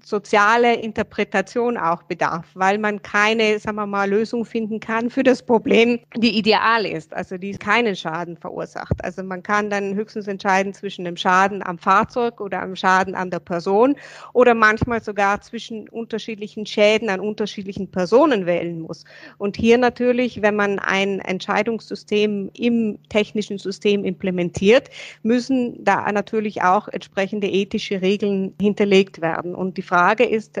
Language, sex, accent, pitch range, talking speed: German, female, German, 180-215 Hz, 150 wpm